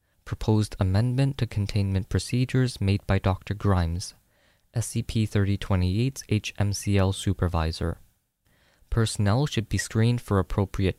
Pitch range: 95-120 Hz